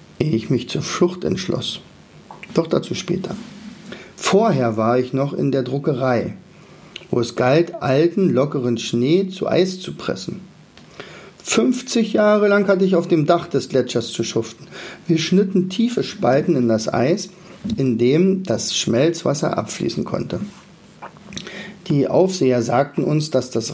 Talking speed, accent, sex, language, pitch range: 145 wpm, German, male, German, 125-185 Hz